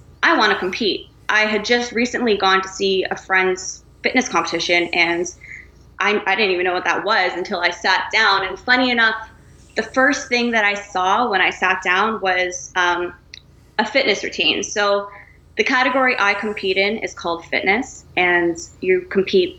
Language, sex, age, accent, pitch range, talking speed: English, female, 20-39, American, 180-210 Hz, 180 wpm